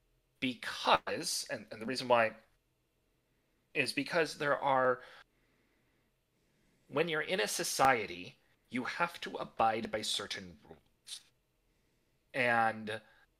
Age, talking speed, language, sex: 30-49, 105 wpm, English, male